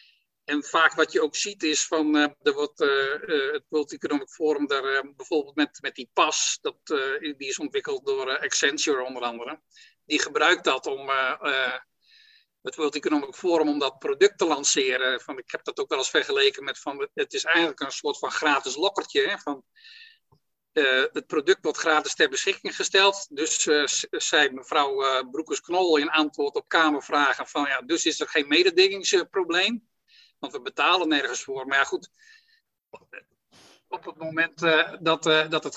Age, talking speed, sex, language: 50-69, 185 wpm, male, Dutch